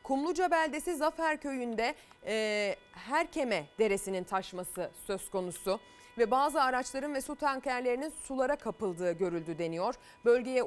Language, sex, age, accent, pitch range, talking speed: Turkish, female, 30-49, native, 220-285 Hz, 115 wpm